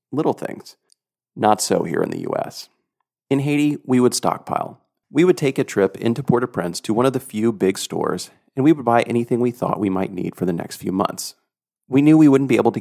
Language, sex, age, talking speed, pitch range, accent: English, male, 40-59, 240 wpm, 100-135 Hz, American